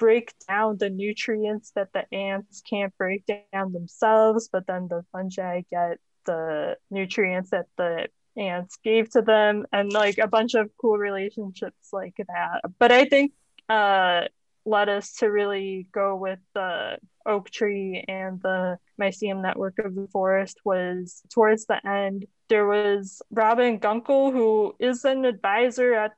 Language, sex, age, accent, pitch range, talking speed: English, female, 20-39, American, 185-220 Hz, 150 wpm